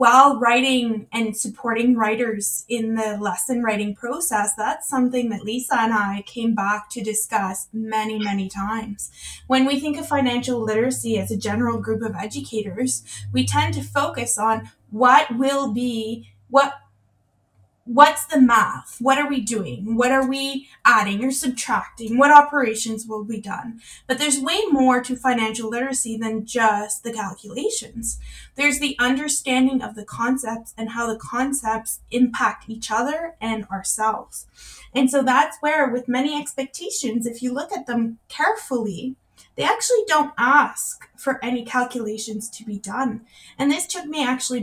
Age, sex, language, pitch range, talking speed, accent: 20-39, female, English, 220-265 Hz, 155 wpm, American